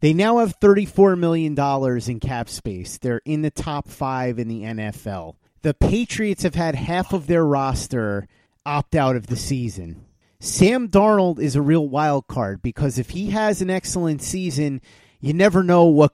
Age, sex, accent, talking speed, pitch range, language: 30-49, male, American, 175 wpm, 130-180 Hz, English